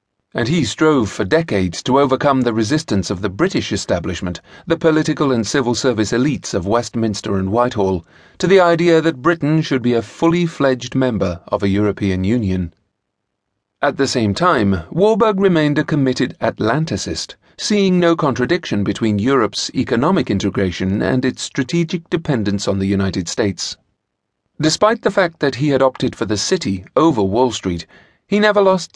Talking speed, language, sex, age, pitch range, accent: 160 wpm, English, male, 40-59, 100-155 Hz, British